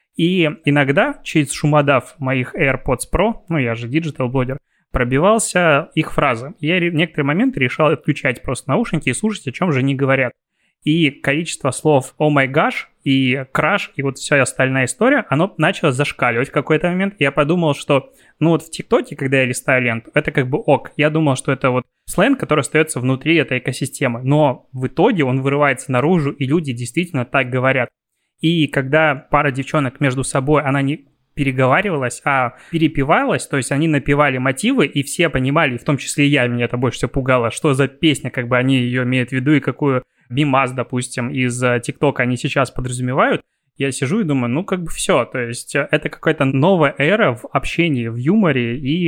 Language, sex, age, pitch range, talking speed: Russian, male, 20-39, 130-155 Hz, 185 wpm